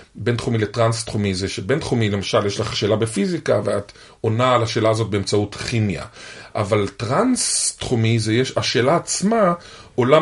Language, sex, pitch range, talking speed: Hebrew, male, 110-135 Hz, 160 wpm